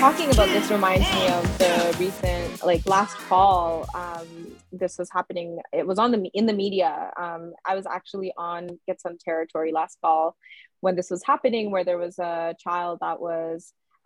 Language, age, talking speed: English, 20-39, 185 wpm